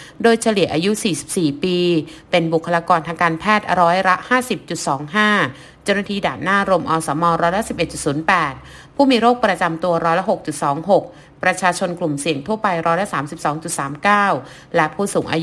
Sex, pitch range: female, 160-205 Hz